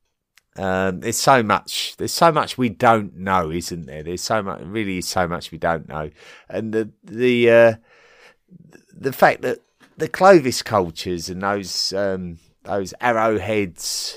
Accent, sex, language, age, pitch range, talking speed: British, male, English, 30-49, 95-120 Hz, 160 wpm